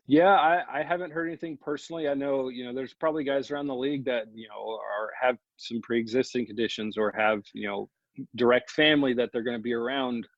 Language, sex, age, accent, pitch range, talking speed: English, male, 40-59, American, 115-135 Hz, 215 wpm